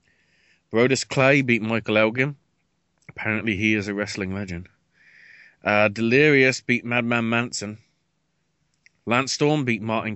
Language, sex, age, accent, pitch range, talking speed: English, male, 30-49, British, 105-130 Hz, 120 wpm